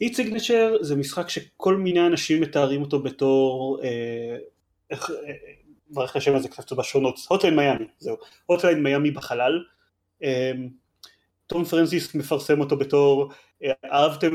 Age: 30-49